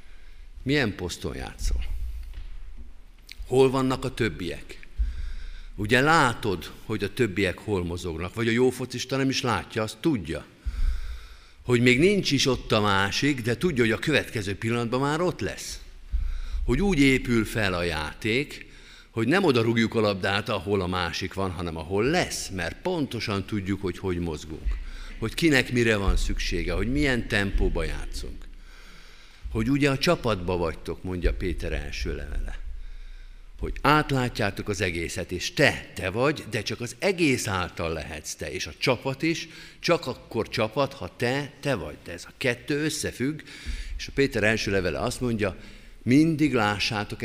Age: 50-69